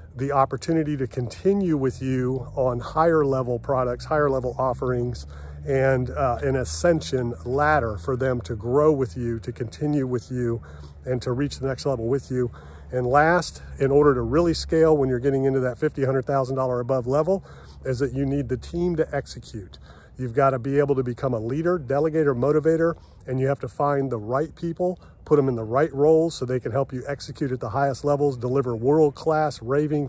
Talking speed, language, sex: 195 wpm, English, male